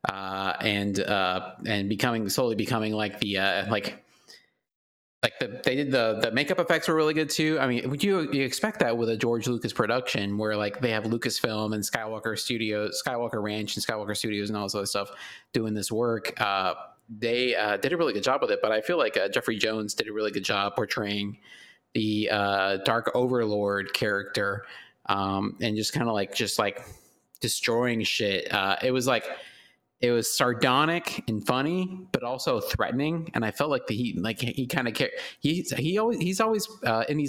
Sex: male